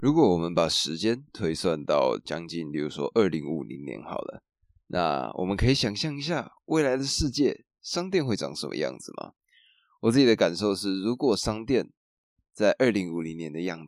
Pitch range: 85-125 Hz